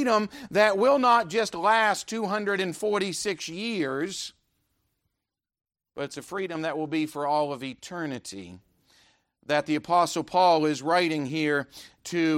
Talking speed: 130 wpm